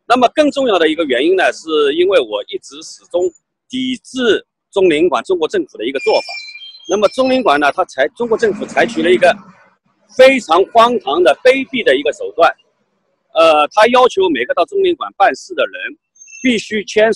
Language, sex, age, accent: Chinese, male, 50-69, native